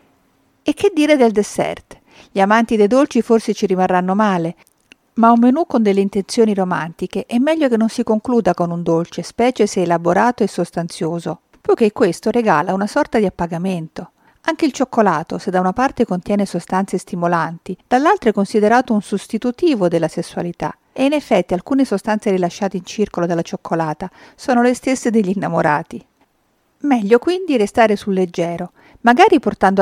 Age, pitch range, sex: 50-69, 180-245 Hz, female